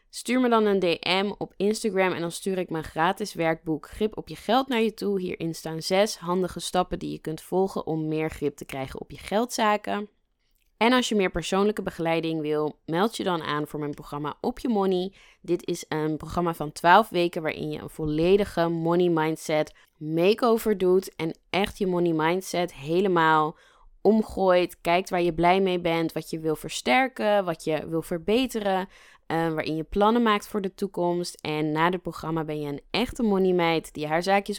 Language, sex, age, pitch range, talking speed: Dutch, female, 20-39, 155-200 Hz, 195 wpm